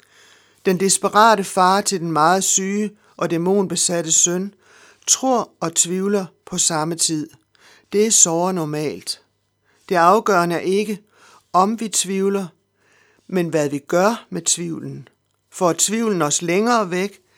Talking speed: 135 wpm